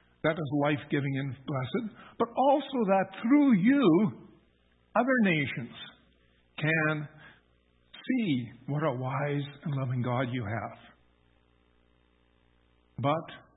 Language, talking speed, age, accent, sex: English, 100 wpm, 60-79, American, male